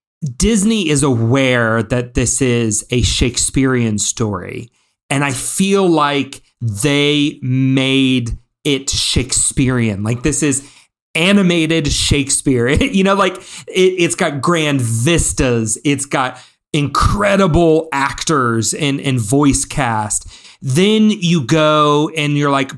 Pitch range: 120-160 Hz